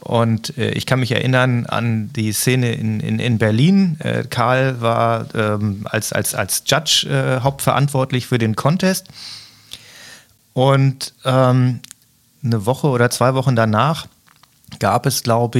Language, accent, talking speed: German, German, 140 wpm